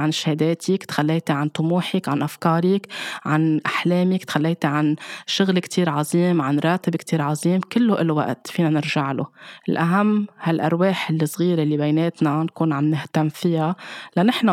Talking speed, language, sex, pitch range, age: 145 wpm, Arabic, female, 155-175 Hz, 20-39